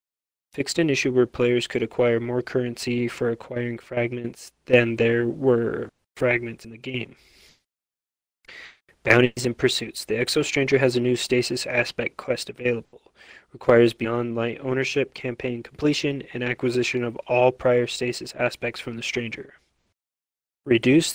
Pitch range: 120-130 Hz